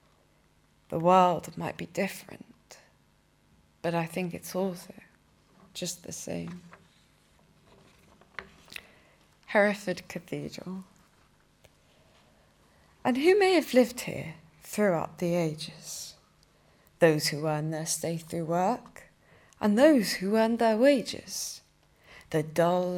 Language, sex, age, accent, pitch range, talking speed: English, female, 20-39, British, 170-210 Hz, 100 wpm